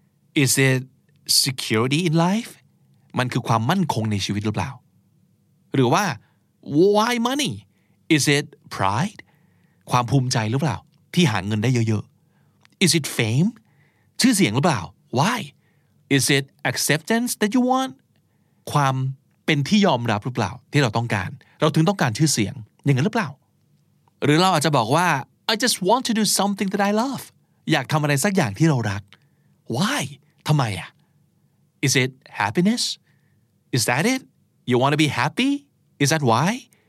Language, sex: Thai, male